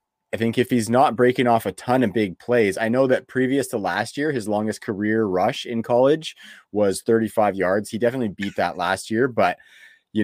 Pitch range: 95-120 Hz